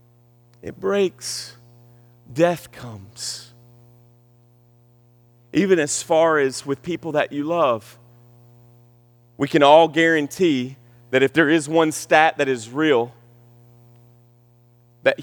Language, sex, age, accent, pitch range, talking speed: English, male, 40-59, American, 120-135 Hz, 105 wpm